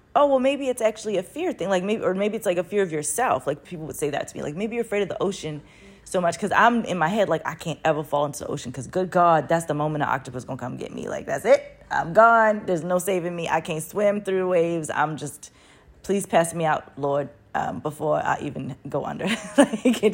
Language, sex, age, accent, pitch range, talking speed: English, female, 20-39, American, 140-200 Hz, 265 wpm